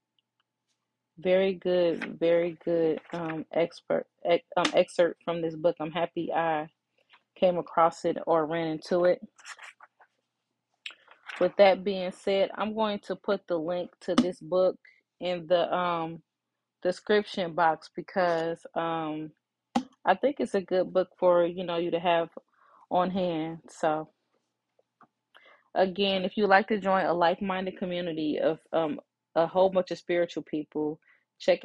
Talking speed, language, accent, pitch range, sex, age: 145 wpm, English, American, 160-185 Hz, female, 30-49